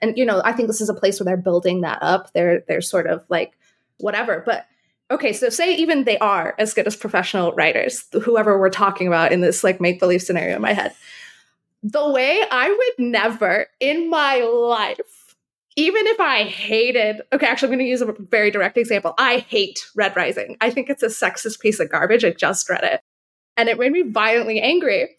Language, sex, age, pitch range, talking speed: English, female, 20-39, 210-285 Hz, 205 wpm